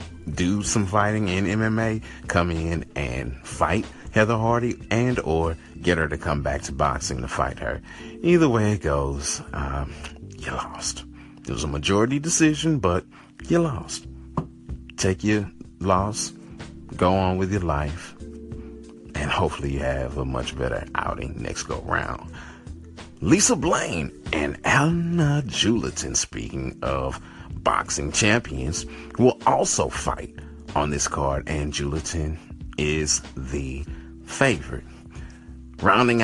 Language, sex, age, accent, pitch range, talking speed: English, male, 40-59, American, 70-100 Hz, 130 wpm